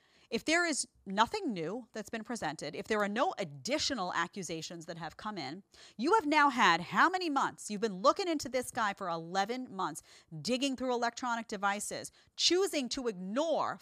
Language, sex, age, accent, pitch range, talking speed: English, female, 40-59, American, 185-260 Hz, 180 wpm